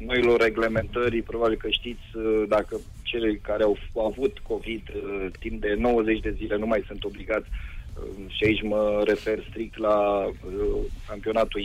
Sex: male